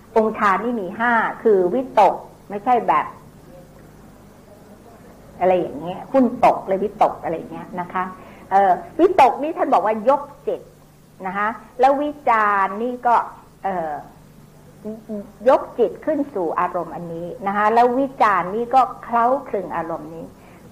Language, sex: Thai, female